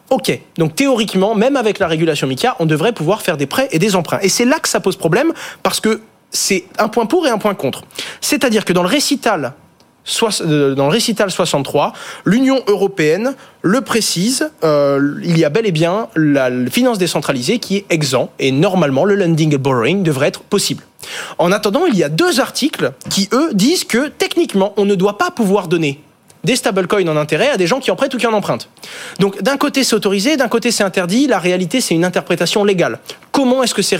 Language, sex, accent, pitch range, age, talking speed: French, male, French, 155-225 Hz, 20-39, 210 wpm